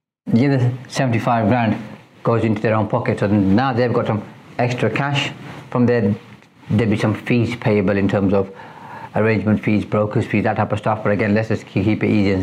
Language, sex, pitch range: English, male, 110-145 Hz